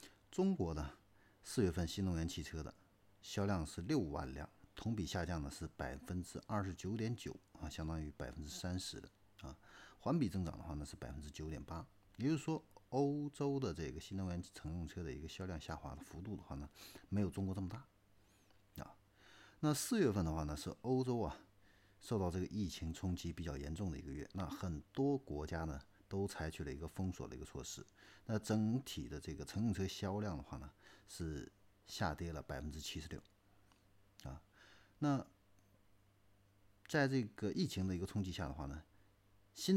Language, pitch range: Chinese, 80-100 Hz